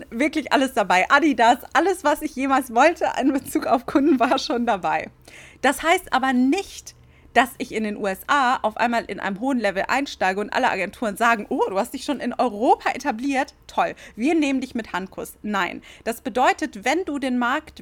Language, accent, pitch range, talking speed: German, German, 225-290 Hz, 190 wpm